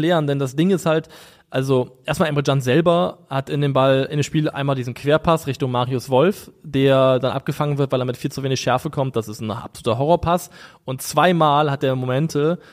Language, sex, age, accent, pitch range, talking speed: German, male, 20-39, German, 125-155 Hz, 215 wpm